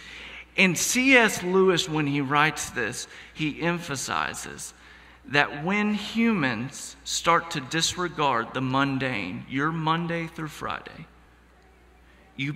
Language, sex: English, male